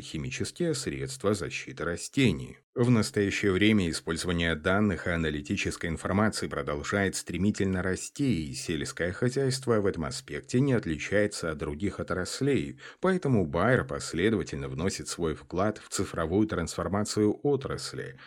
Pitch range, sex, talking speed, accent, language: 85-120 Hz, male, 120 wpm, native, Russian